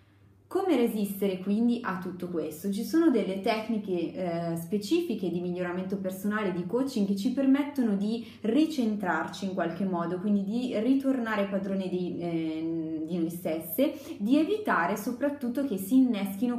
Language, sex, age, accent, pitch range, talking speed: Italian, female, 20-39, native, 190-250 Hz, 150 wpm